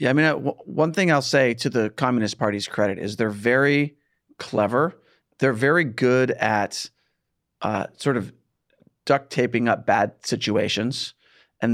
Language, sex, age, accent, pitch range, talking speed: English, male, 40-59, American, 105-140 Hz, 150 wpm